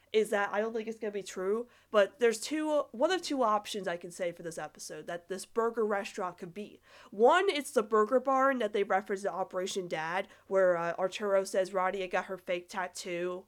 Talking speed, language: 215 wpm, English